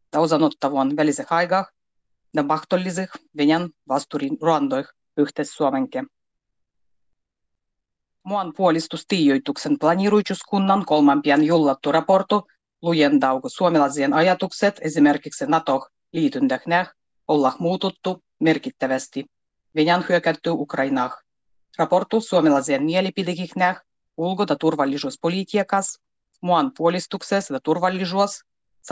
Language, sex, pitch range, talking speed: Finnish, female, 145-195 Hz, 85 wpm